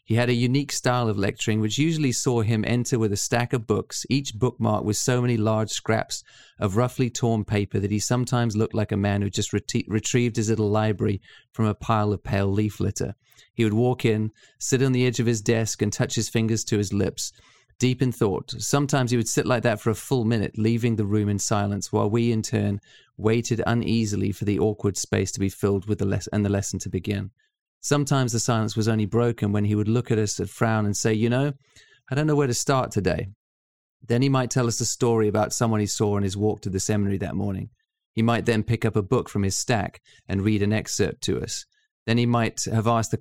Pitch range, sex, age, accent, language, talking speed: 105-120 Hz, male, 30-49, British, English, 235 wpm